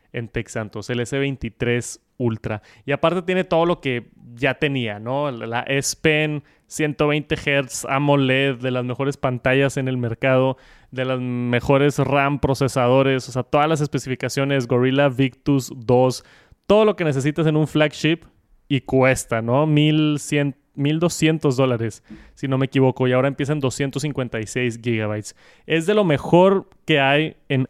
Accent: Mexican